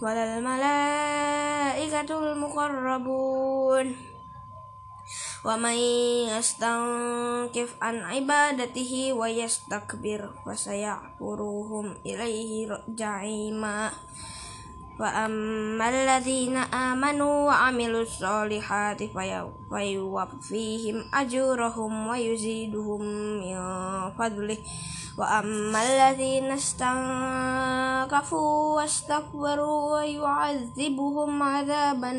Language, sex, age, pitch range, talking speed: Indonesian, female, 20-39, 220-275 Hz, 55 wpm